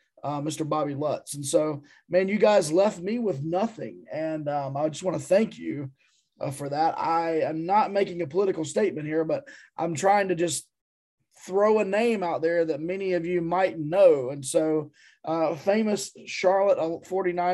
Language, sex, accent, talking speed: English, male, American, 180 wpm